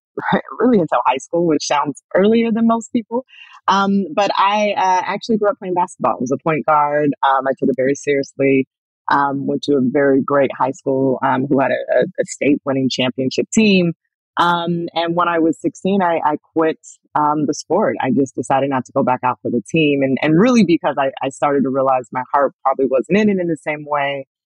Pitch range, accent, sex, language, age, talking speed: 140-190 Hz, American, female, English, 30-49, 215 wpm